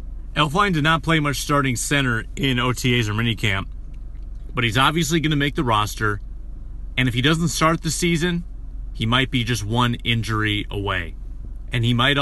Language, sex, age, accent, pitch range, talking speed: English, male, 30-49, American, 115-140 Hz, 175 wpm